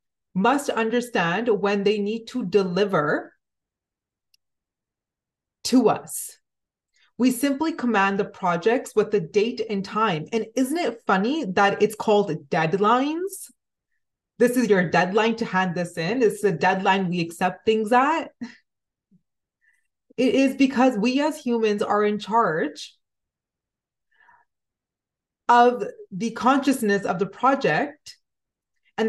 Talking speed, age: 120 wpm, 30-49